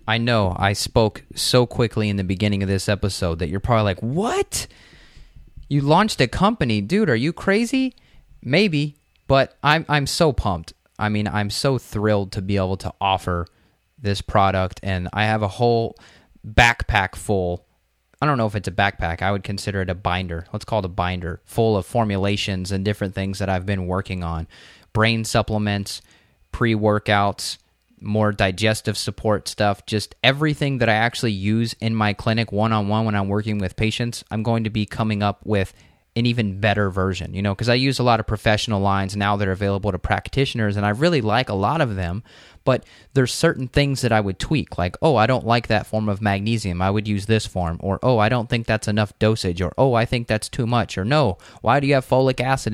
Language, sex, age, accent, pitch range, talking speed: English, male, 20-39, American, 100-120 Hz, 205 wpm